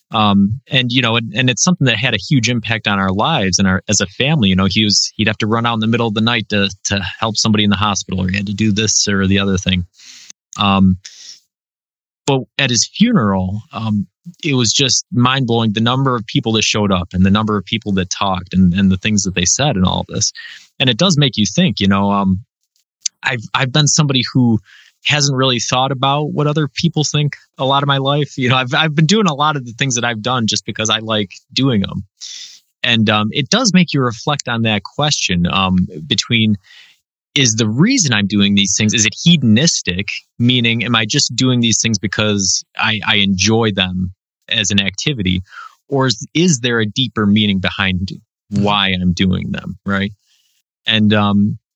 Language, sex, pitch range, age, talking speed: English, male, 100-130 Hz, 20-39, 220 wpm